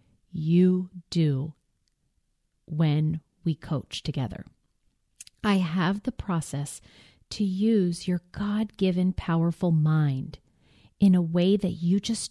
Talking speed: 110 wpm